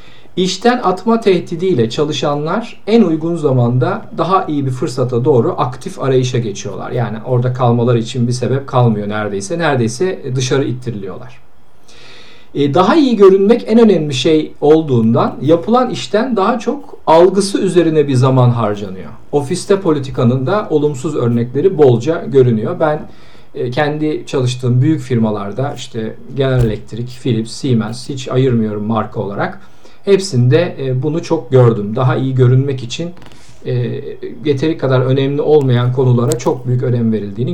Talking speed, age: 130 wpm, 50-69